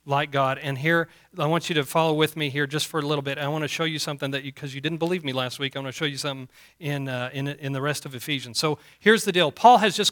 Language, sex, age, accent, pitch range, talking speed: English, male, 40-59, American, 145-190 Hz, 315 wpm